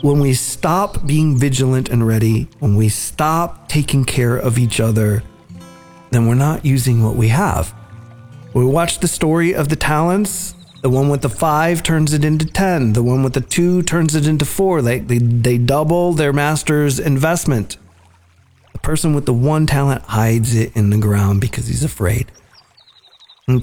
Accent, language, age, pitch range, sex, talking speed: American, English, 40-59, 110-145 Hz, male, 175 wpm